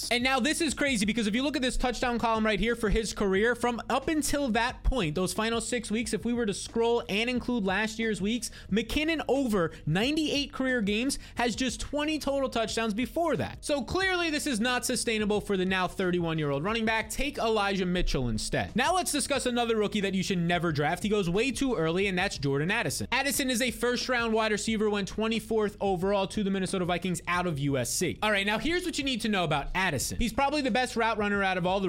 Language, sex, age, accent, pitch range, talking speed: English, male, 20-39, American, 195-260 Hz, 230 wpm